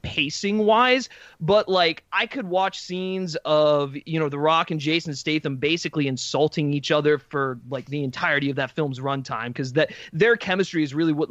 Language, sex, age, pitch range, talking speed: English, male, 20-39, 145-180 Hz, 185 wpm